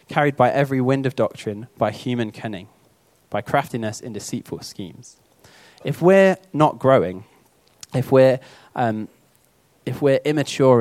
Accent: British